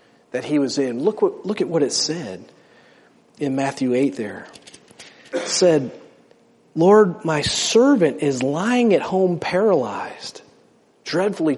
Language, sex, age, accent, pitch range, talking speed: English, male, 40-59, American, 145-205 Hz, 135 wpm